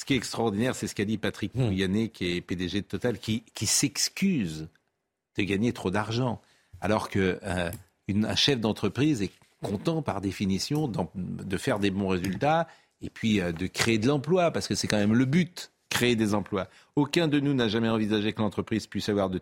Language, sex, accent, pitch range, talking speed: French, male, French, 100-145 Hz, 200 wpm